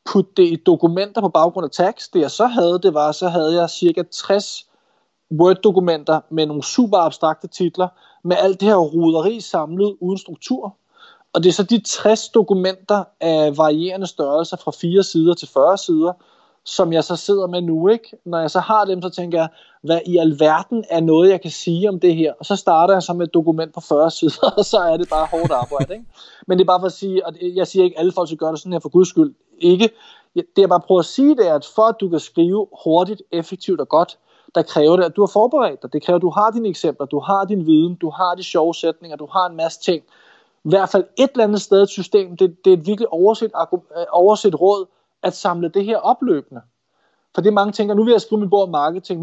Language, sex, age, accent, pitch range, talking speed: Danish, male, 20-39, native, 165-200 Hz, 240 wpm